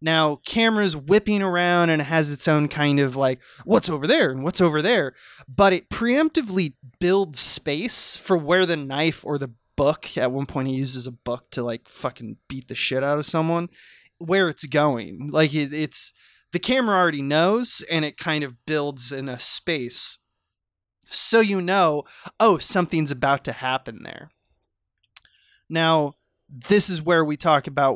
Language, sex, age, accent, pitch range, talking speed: English, male, 20-39, American, 135-180 Hz, 170 wpm